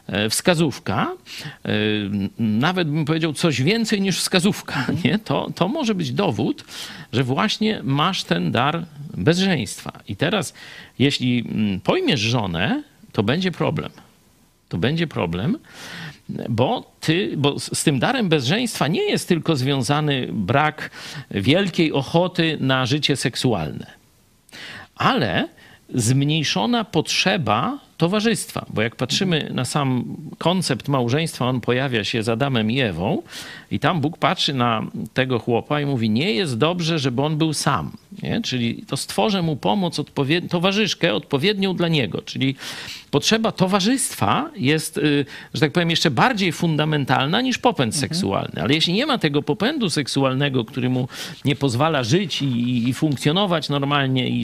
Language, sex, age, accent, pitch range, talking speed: Polish, male, 50-69, native, 130-175 Hz, 130 wpm